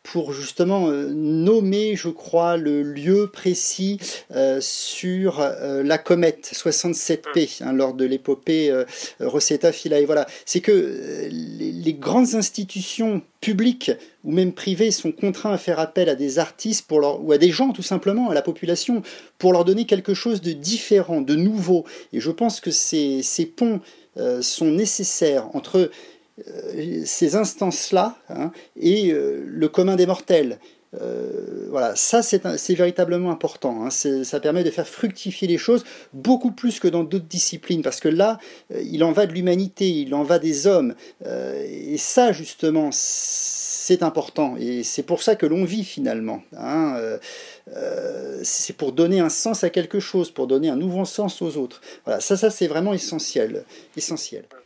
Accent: French